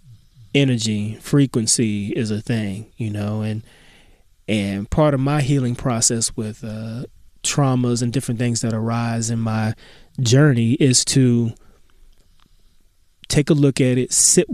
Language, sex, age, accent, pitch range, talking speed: English, male, 20-39, American, 115-140 Hz, 135 wpm